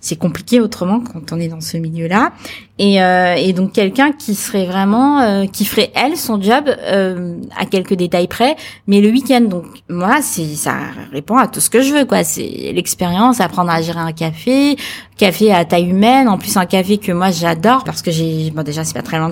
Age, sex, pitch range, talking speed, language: 20-39, female, 180-235 Hz, 215 wpm, French